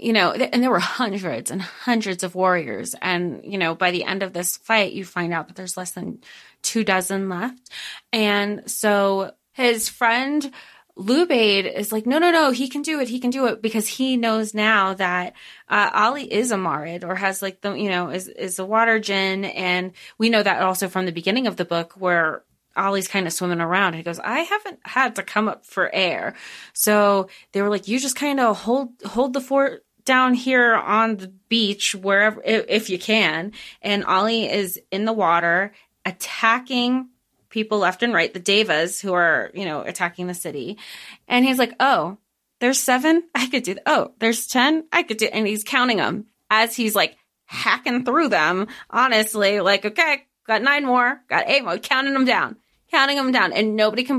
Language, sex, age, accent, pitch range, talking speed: English, female, 30-49, American, 190-250 Hz, 200 wpm